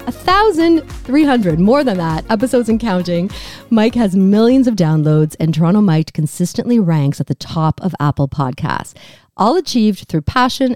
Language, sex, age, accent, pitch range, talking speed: English, female, 40-59, American, 155-225 Hz, 150 wpm